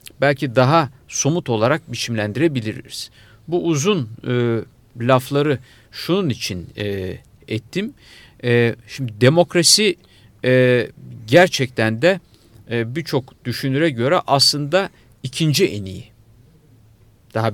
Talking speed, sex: 95 wpm, male